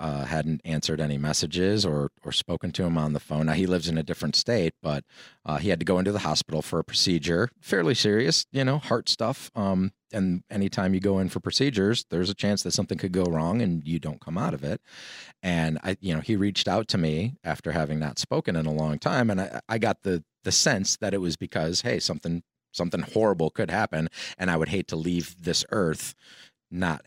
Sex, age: male, 30-49